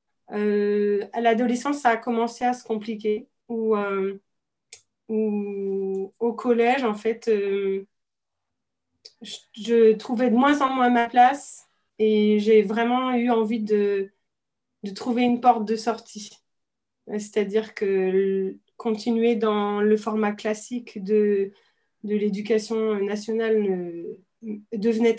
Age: 30-49